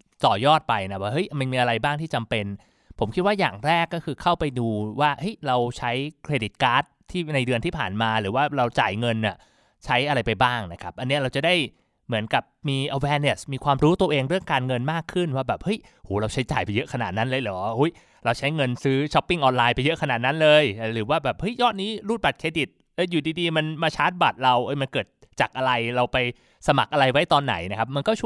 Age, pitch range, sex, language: 20-39, 120-160 Hz, male, Thai